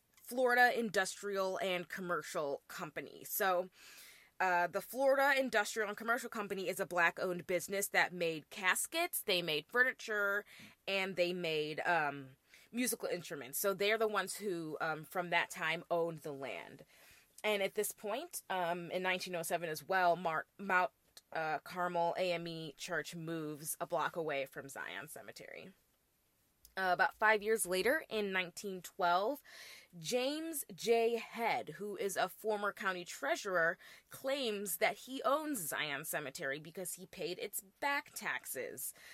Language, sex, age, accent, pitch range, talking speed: English, female, 20-39, American, 165-210 Hz, 140 wpm